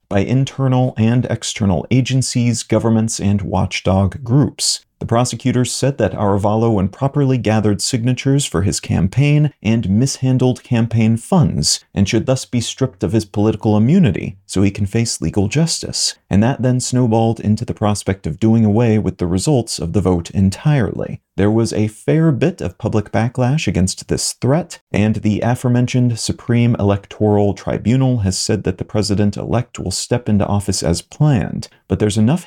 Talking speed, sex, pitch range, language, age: 160 wpm, male, 105-130 Hz, English, 30-49